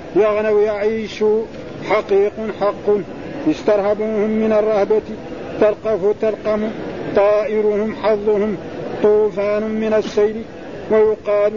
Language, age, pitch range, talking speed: Arabic, 50-69, 210-220 Hz, 80 wpm